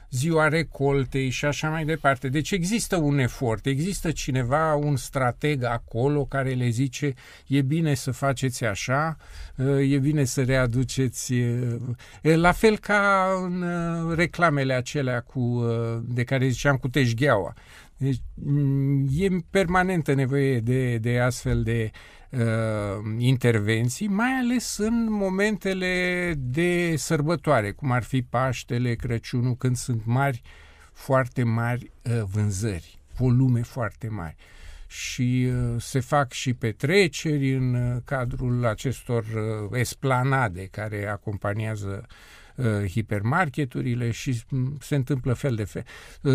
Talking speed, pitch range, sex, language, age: 110 wpm, 115-145 Hz, male, Romanian, 50-69